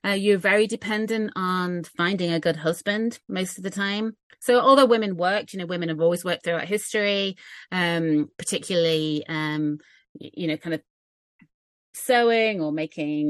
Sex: female